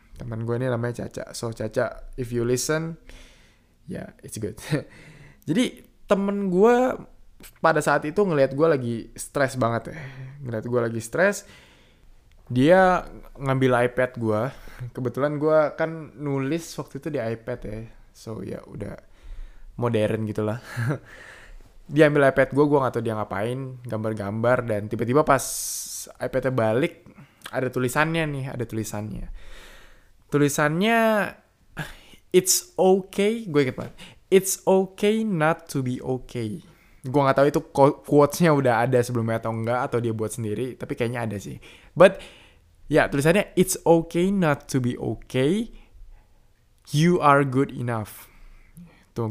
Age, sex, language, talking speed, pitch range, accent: 20-39, male, Indonesian, 135 wpm, 115-155 Hz, native